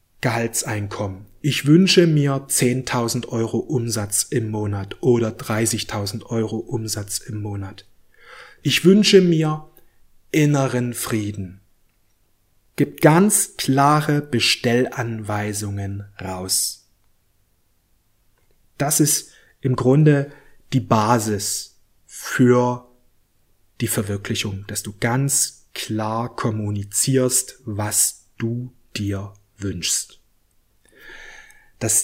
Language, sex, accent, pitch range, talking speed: German, male, German, 105-140 Hz, 80 wpm